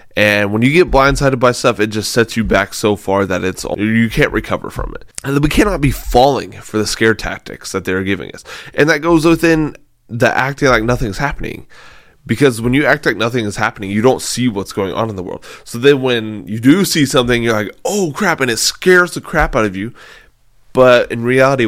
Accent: American